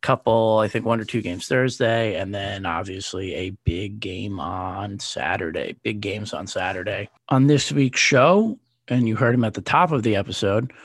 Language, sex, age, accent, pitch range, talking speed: English, male, 30-49, American, 105-130 Hz, 190 wpm